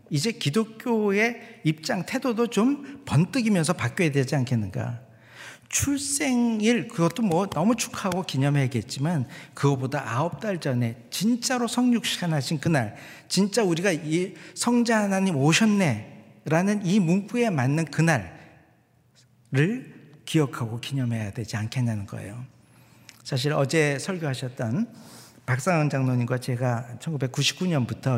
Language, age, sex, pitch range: Korean, 50-69, male, 120-170 Hz